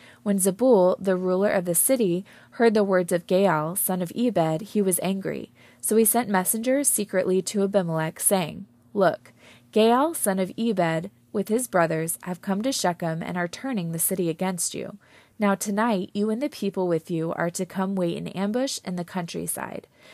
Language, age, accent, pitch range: English, 20-39, American, 175-215 Hz